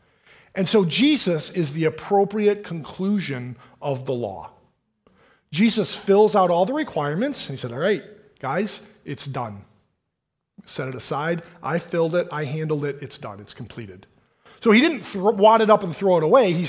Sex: male